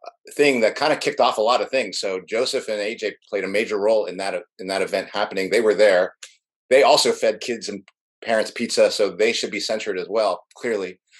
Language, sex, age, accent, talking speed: English, male, 30-49, American, 225 wpm